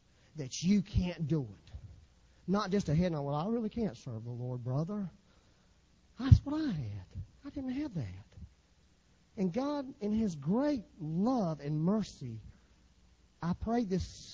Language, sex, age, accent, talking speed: English, male, 40-59, American, 160 wpm